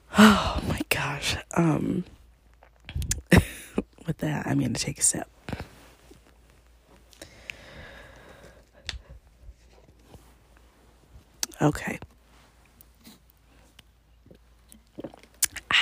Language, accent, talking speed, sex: English, American, 50 wpm, female